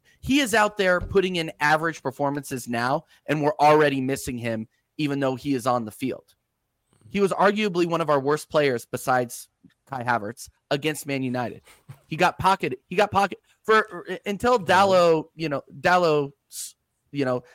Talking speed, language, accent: 170 wpm, English, American